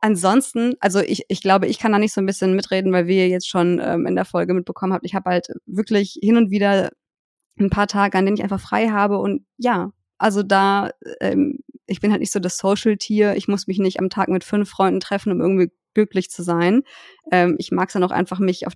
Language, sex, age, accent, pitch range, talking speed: German, female, 20-39, German, 180-215 Hz, 240 wpm